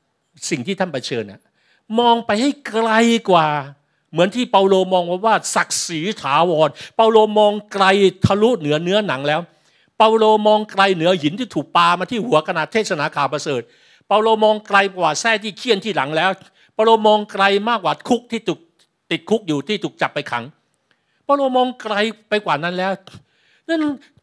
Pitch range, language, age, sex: 150-225 Hz, Thai, 60-79, male